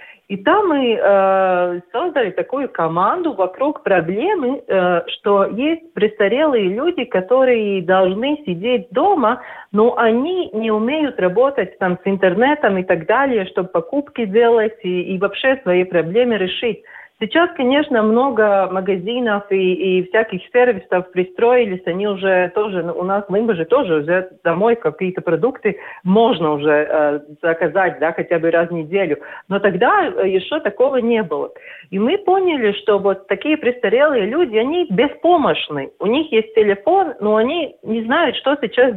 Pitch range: 185-265 Hz